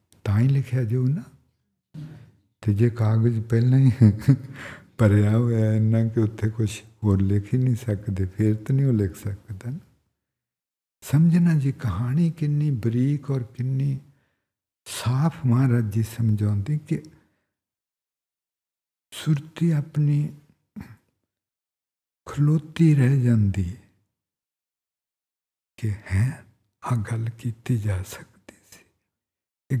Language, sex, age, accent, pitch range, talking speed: English, male, 60-79, Indian, 105-145 Hz, 50 wpm